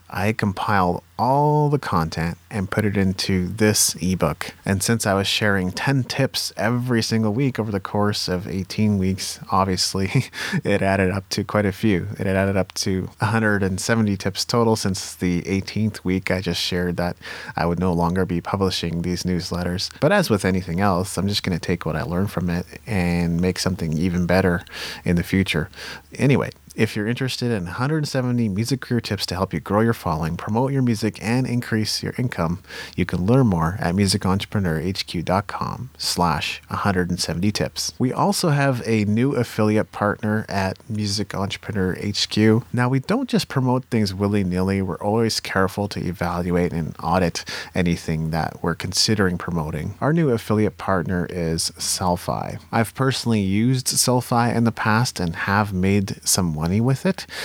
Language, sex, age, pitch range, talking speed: English, male, 30-49, 90-115 Hz, 170 wpm